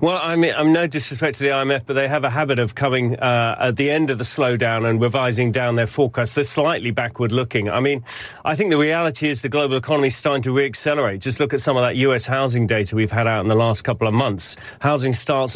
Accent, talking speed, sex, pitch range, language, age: British, 255 wpm, male, 120-145 Hz, English, 40-59